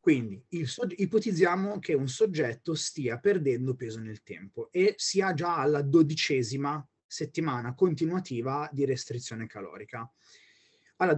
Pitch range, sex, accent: 120-155 Hz, male, native